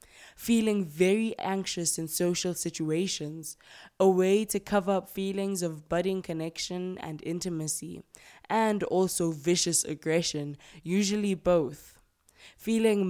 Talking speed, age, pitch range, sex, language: 110 wpm, 20-39, 160-195 Hz, female, English